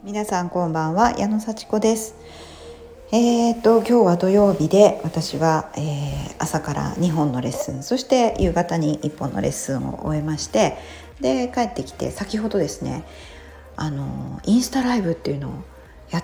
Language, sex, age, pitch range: Japanese, female, 40-59, 135-195 Hz